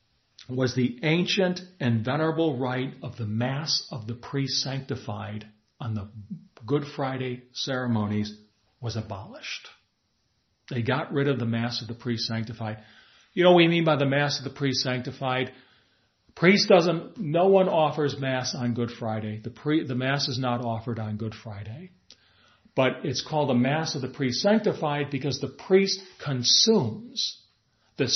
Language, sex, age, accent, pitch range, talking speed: English, male, 40-59, American, 115-155 Hz, 160 wpm